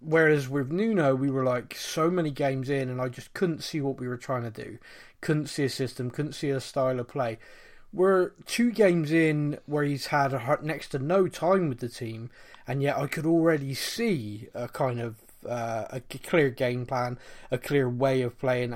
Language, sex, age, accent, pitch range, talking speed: English, male, 20-39, British, 130-165 Hz, 210 wpm